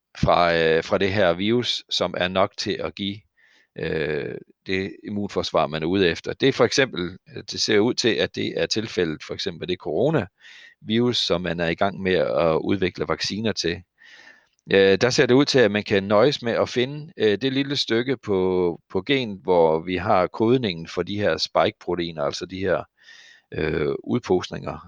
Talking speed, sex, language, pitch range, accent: 190 wpm, male, Danish, 85-115 Hz, native